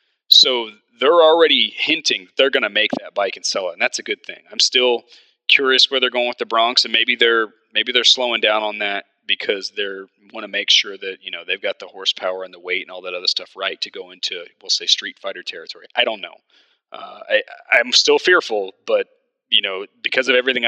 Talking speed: 230 wpm